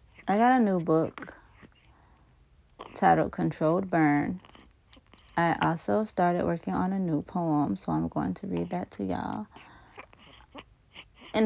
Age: 20-39